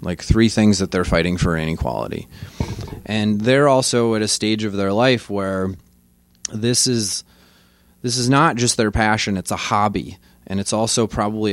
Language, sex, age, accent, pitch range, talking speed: English, male, 20-39, American, 90-115 Hz, 170 wpm